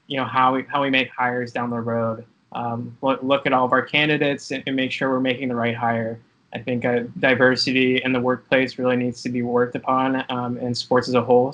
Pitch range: 125-135 Hz